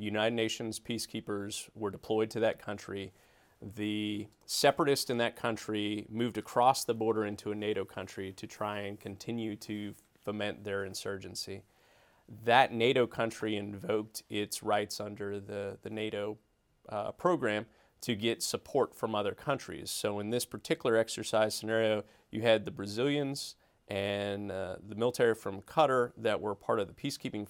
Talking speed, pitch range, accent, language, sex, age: 150 wpm, 100-115 Hz, American, English, male, 30-49